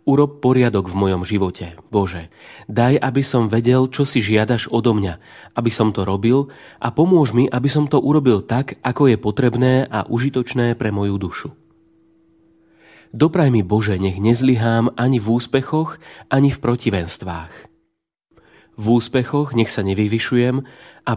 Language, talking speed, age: Slovak, 145 wpm, 30-49